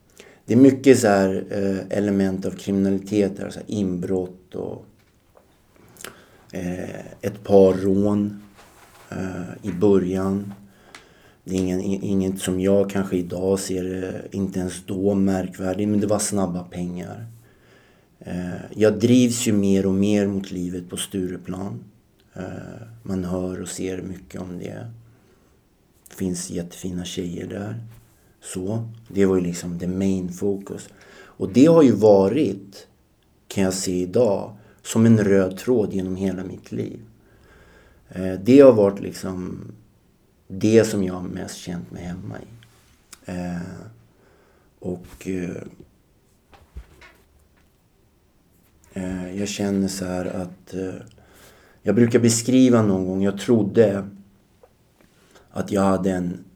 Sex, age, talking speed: male, 50-69, 115 wpm